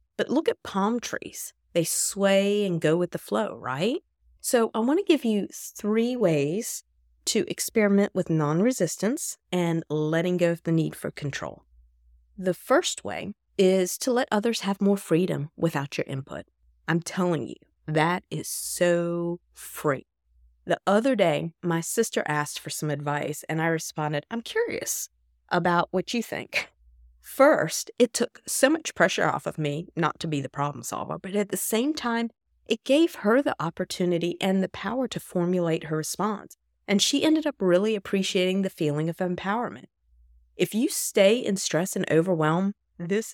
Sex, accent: female, American